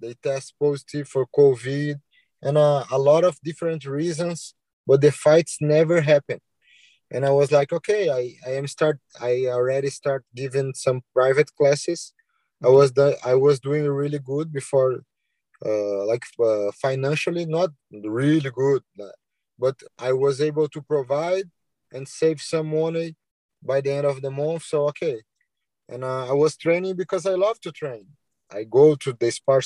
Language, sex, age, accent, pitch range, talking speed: English, male, 20-39, Brazilian, 135-160 Hz, 165 wpm